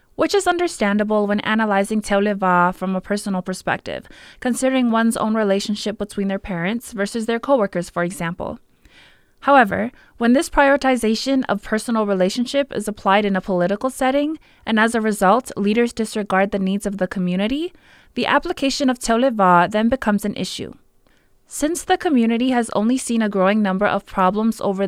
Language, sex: English, female